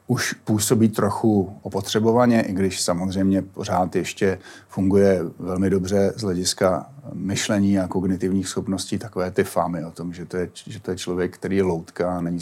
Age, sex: 30-49, male